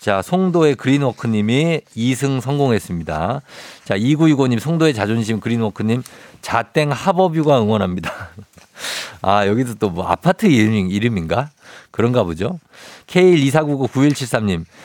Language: Korean